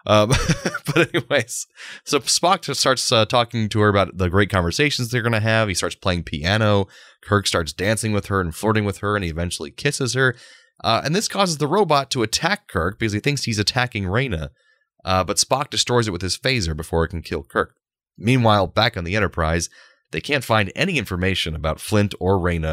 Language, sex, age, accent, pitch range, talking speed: English, male, 30-49, American, 95-135 Hz, 210 wpm